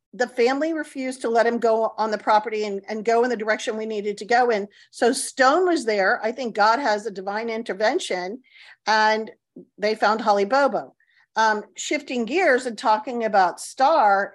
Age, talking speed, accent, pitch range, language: 50-69, 185 wpm, American, 215-275 Hz, English